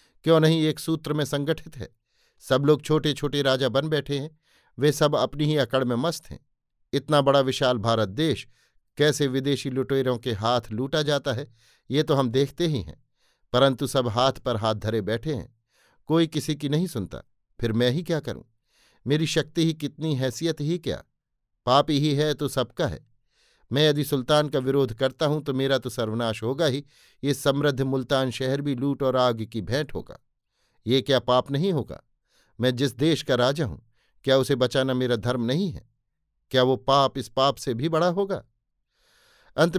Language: Hindi